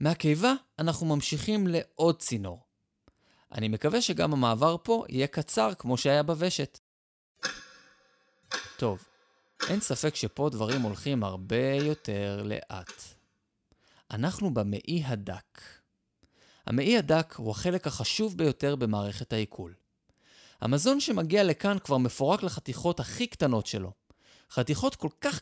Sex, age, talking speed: male, 20-39, 110 wpm